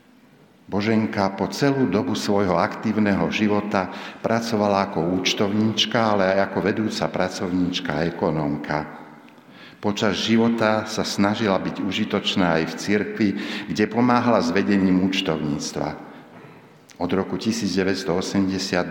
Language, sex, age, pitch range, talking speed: Slovak, male, 60-79, 90-110 Hz, 110 wpm